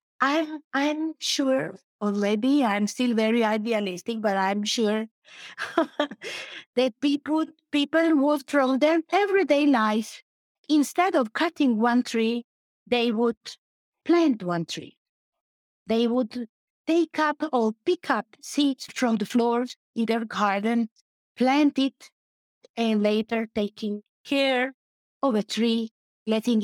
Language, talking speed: English, 120 wpm